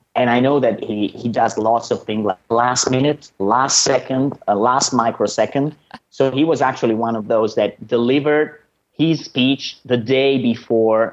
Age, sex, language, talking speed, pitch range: 30-49, male, English, 175 wpm, 105-135 Hz